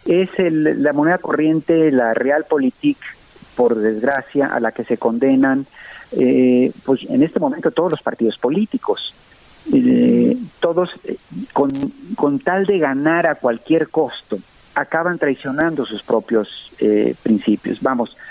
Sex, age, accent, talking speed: male, 50-69, Mexican, 135 wpm